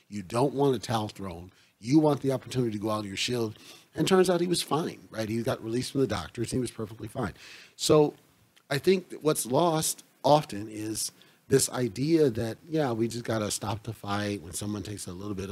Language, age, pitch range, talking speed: English, 40-59, 110-135 Hz, 230 wpm